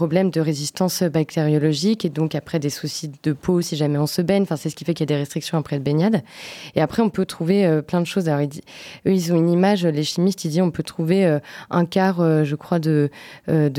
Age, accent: 20-39, French